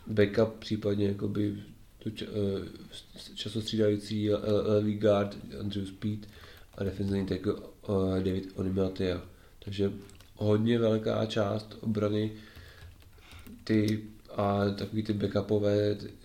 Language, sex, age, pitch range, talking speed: Czech, male, 30-49, 100-105 Hz, 100 wpm